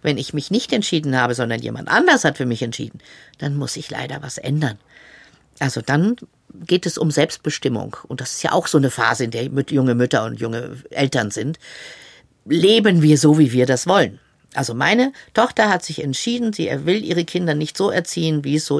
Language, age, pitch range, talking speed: German, 50-69, 140-205 Hz, 205 wpm